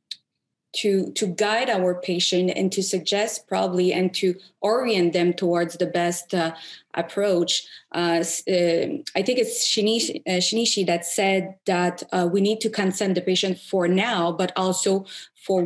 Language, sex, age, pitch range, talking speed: English, female, 20-39, 175-195 Hz, 155 wpm